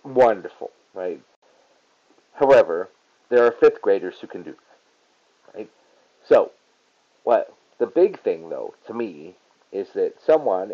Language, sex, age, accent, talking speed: English, male, 40-59, American, 130 wpm